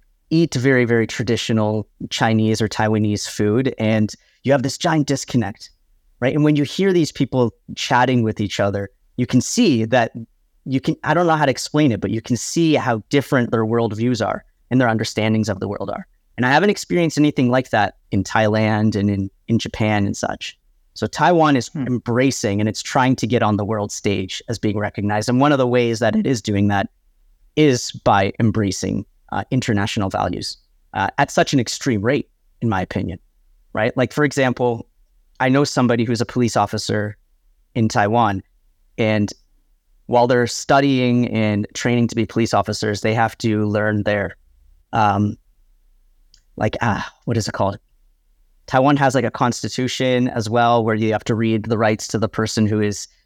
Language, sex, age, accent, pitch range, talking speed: English, male, 30-49, American, 105-130 Hz, 185 wpm